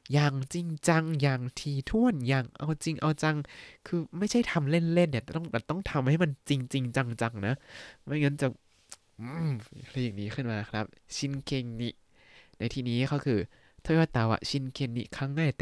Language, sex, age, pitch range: Thai, male, 20-39, 115-150 Hz